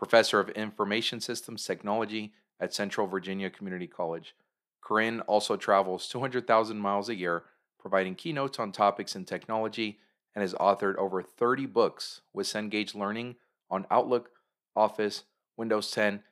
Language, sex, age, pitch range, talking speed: English, male, 40-59, 100-110 Hz, 135 wpm